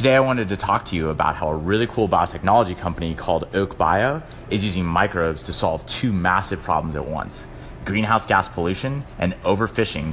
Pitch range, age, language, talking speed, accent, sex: 90-120 Hz, 30-49, English, 190 wpm, American, male